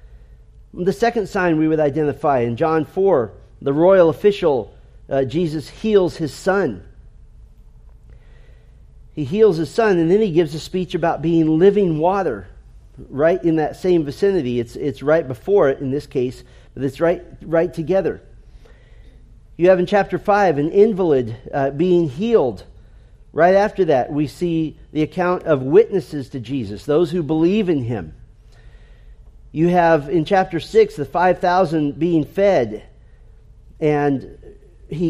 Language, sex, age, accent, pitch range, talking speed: English, male, 40-59, American, 130-180 Hz, 145 wpm